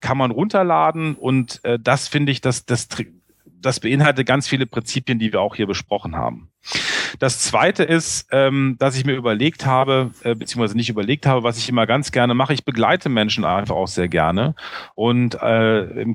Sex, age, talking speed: male, 40-59, 180 wpm